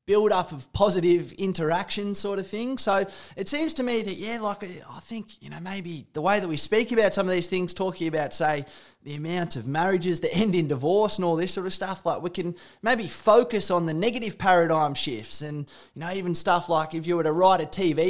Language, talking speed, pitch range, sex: English, 235 wpm, 155-195 Hz, male